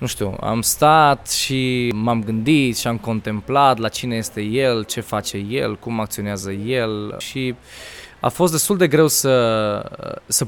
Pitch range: 105-135 Hz